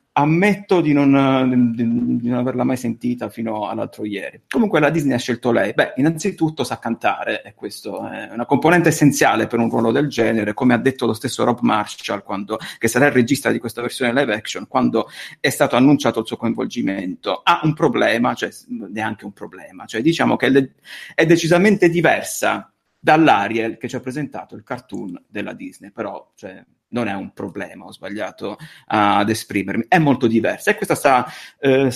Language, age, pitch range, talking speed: Italian, 30-49, 110-145 Hz, 180 wpm